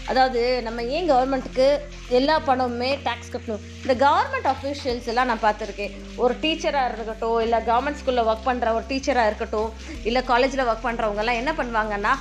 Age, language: 20-39, Tamil